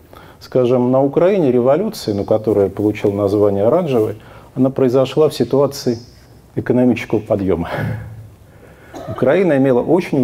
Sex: male